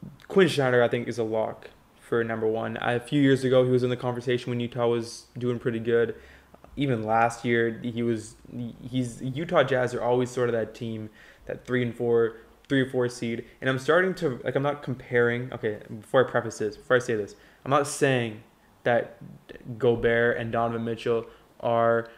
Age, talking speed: 20-39, 200 wpm